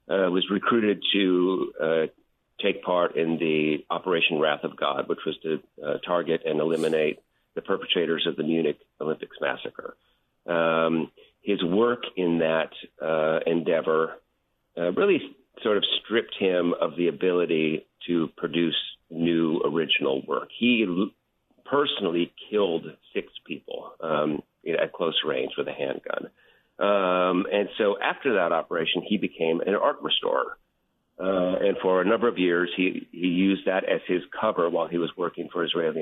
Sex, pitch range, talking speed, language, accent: male, 80-90 Hz, 150 wpm, English, American